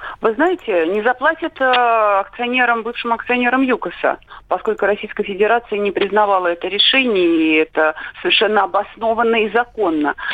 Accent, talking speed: native, 120 wpm